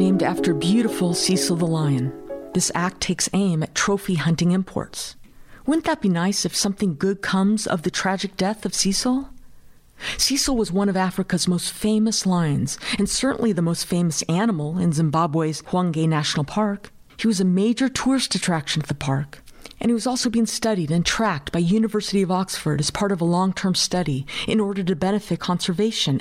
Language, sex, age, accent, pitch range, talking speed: English, female, 50-69, American, 170-210 Hz, 180 wpm